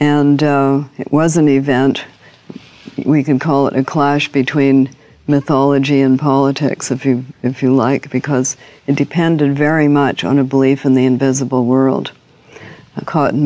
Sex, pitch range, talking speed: female, 130-145 Hz, 150 wpm